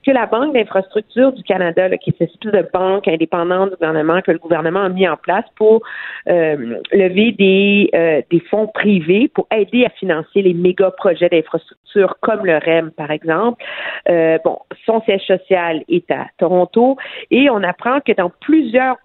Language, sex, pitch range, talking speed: French, female, 175-235 Hz, 180 wpm